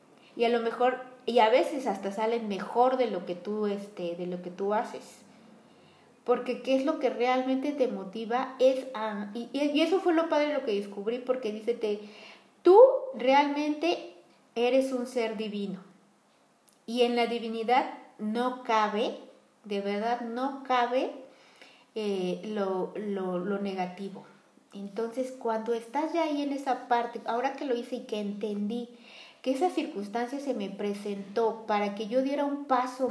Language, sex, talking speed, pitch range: Spanish, female, 160 wpm, 210-265 Hz